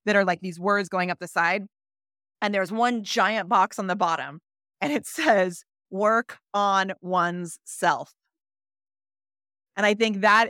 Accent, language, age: American, English, 30-49